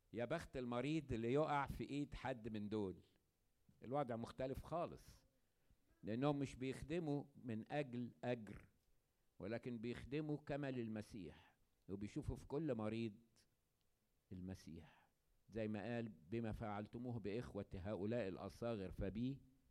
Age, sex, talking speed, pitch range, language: 50-69, male, 115 wpm, 100-135 Hz, Arabic